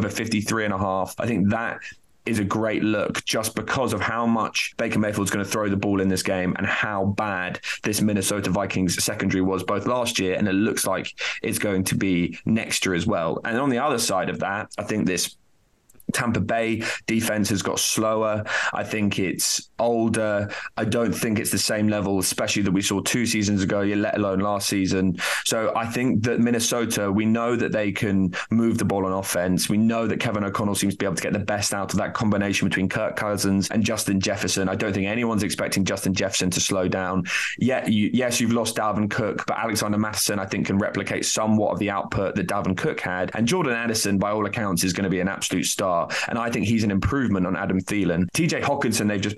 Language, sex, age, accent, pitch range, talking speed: English, male, 20-39, British, 95-115 Hz, 220 wpm